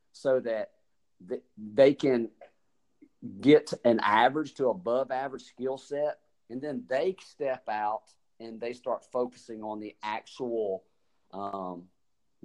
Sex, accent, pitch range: male, American, 115-150 Hz